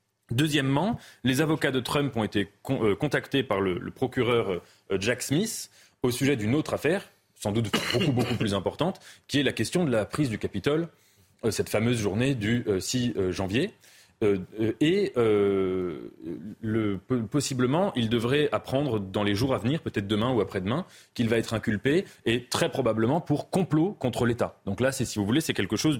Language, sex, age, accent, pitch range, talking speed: French, male, 30-49, French, 110-160 Hz, 190 wpm